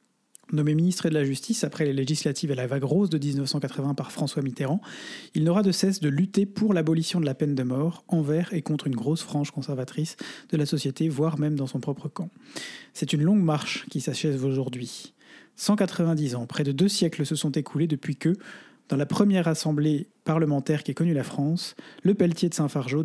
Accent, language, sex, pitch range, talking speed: French, French, male, 140-175 Hz, 200 wpm